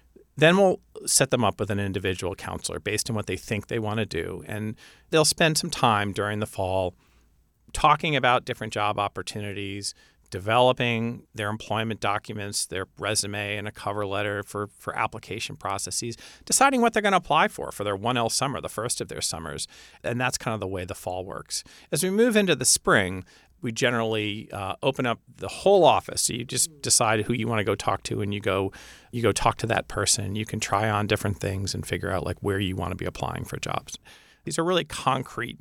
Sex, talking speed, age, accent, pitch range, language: male, 210 wpm, 40-59, American, 100-130 Hz, English